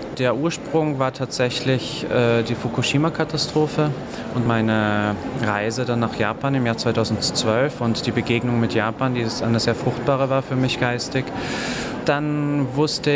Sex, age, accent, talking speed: male, 30-49, German, 145 wpm